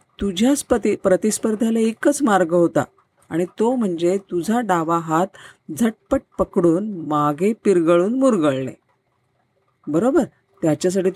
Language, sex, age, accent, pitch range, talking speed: Marathi, female, 40-59, native, 175-240 Hz, 100 wpm